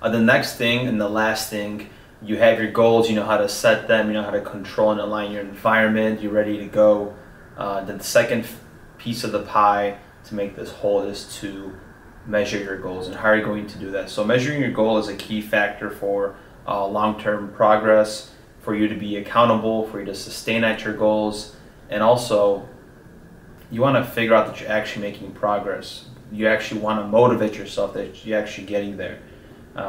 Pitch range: 100-110 Hz